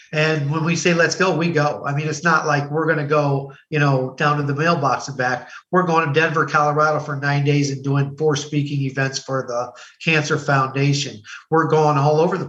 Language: English